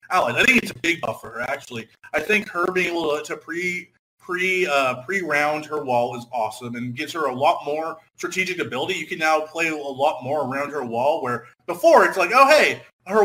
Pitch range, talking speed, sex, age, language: 150-200 Hz, 215 wpm, male, 30-49, English